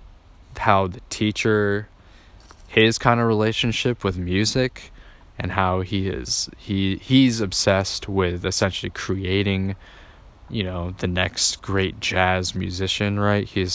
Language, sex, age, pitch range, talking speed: English, male, 20-39, 90-105 Hz, 120 wpm